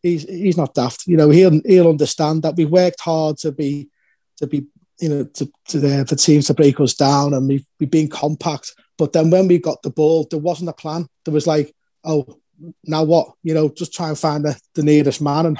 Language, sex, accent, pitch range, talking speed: English, male, British, 150-170 Hz, 230 wpm